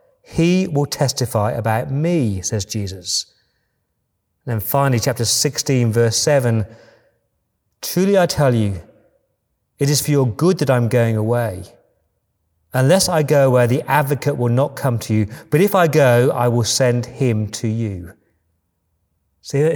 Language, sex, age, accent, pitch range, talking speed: English, male, 40-59, British, 110-165 Hz, 150 wpm